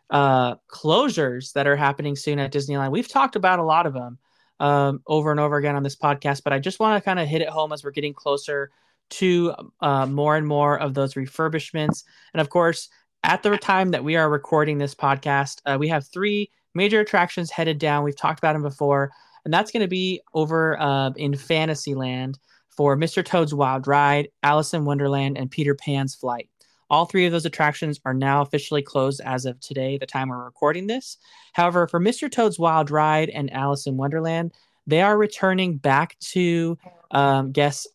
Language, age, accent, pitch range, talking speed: English, 20-39, American, 140-170 Hz, 200 wpm